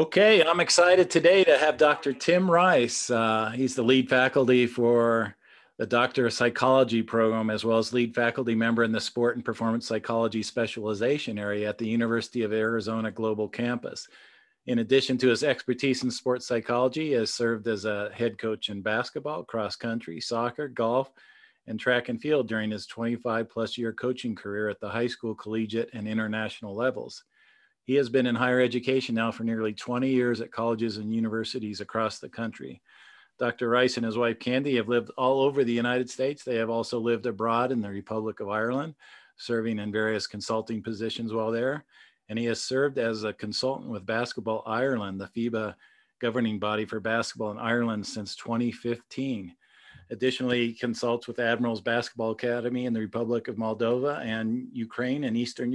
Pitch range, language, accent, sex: 110-125 Hz, English, American, male